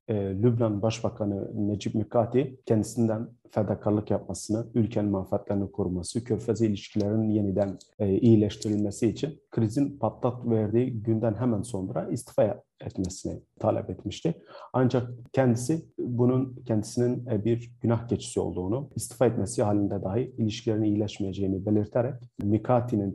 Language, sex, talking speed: Turkish, male, 105 wpm